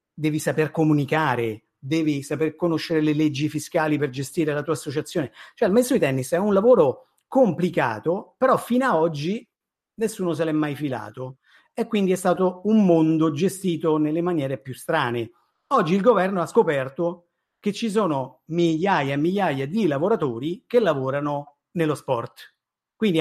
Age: 50-69